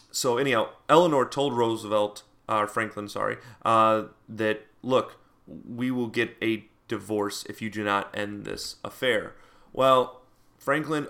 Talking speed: 135 wpm